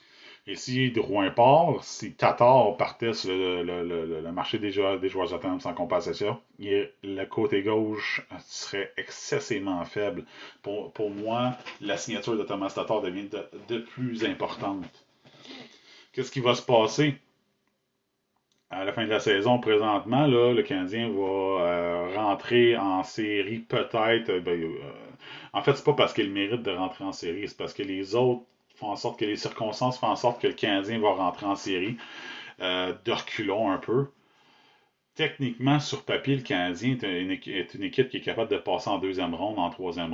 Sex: male